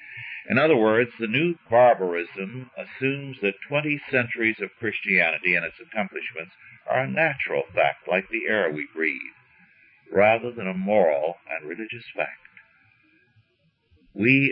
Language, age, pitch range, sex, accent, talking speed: English, 60-79, 95-125 Hz, male, American, 130 wpm